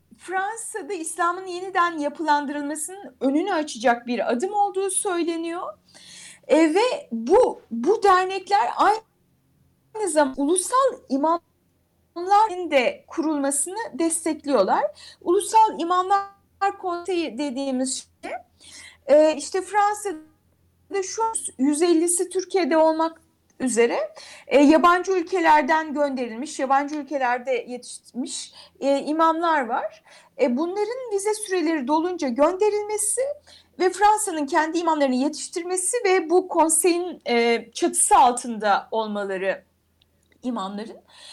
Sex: female